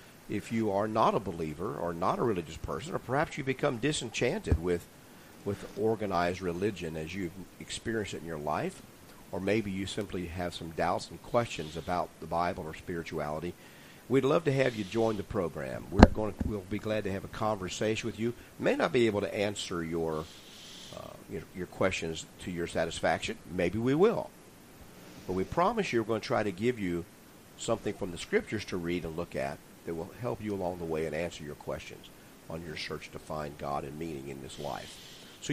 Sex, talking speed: male, 205 wpm